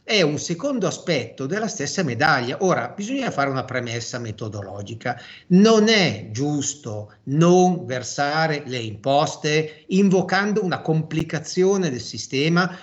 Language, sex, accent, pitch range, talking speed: Italian, male, native, 130-195 Hz, 115 wpm